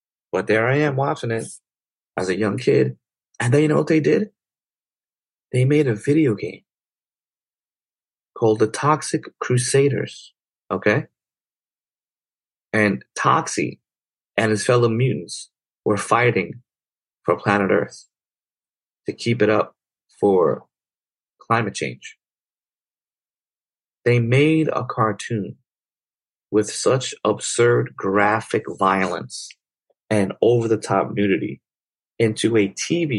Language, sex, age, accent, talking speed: English, male, 30-49, American, 110 wpm